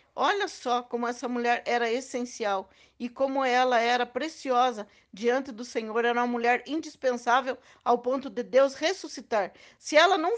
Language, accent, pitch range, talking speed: Portuguese, Brazilian, 230-275 Hz, 155 wpm